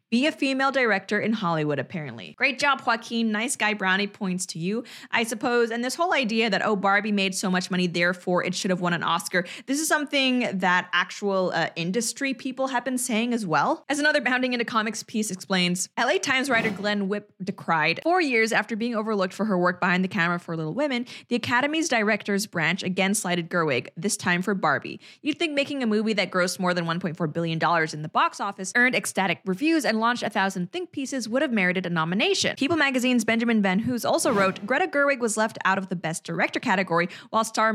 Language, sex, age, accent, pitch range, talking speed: English, female, 20-39, American, 185-240 Hz, 215 wpm